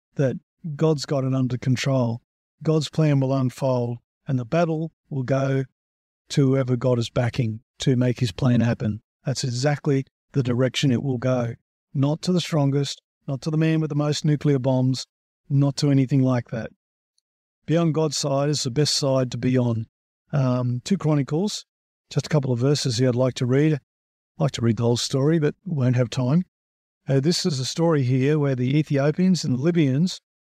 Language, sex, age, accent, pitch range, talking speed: English, male, 50-69, Australian, 125-155 Hz, 190 wpm